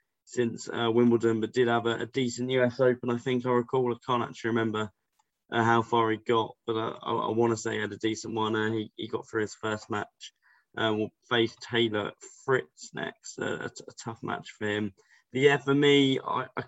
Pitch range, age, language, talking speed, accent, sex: 110-120 Hz, 20-39, English, 225 wpm, British, male